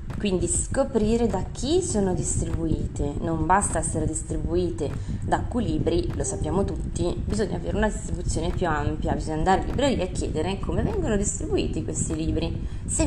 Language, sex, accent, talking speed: Italian, female, native, 150 wpm